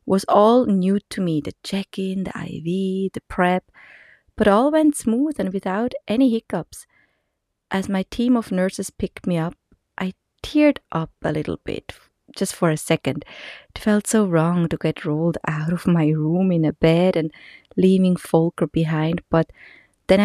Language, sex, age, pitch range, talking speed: English, female, 30-49, 170-220 Hz, 170 wpm